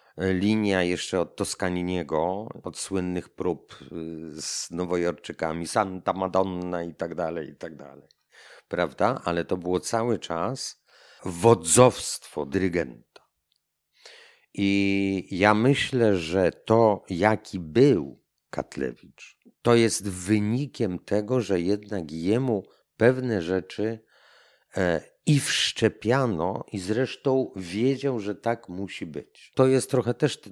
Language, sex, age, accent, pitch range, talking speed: Polish, male, 50-69, native, 90-115 Hz, 110 wpm